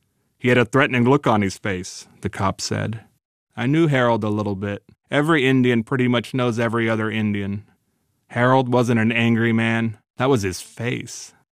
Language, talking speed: English, 175 wpm